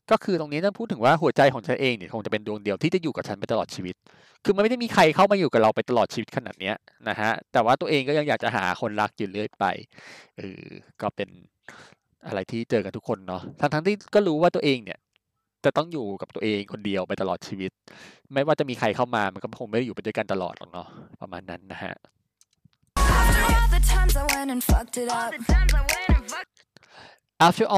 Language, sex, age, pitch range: Thai, male, 20-39, 110-175 Hz